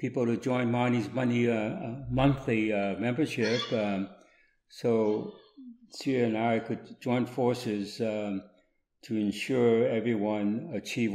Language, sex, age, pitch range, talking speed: English, male, 60-79, 100-115 Hz, 120 wpm